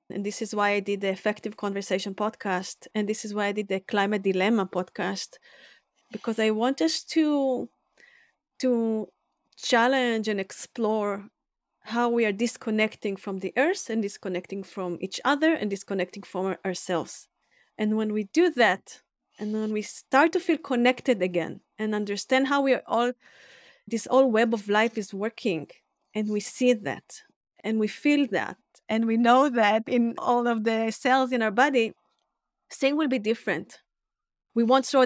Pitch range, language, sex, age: 205-250 Hz, English, female, 30-49